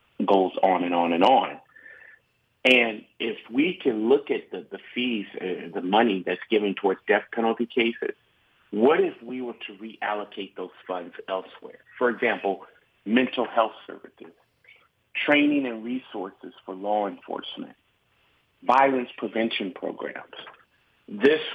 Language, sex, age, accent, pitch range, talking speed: English, male, 50-69, American, 105-150 Hz, 135 wpm